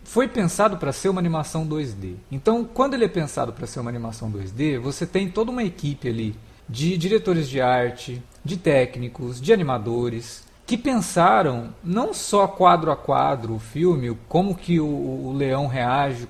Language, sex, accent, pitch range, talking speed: Portuguese, male, Brazilian, 130-185 Hz, 170 wpm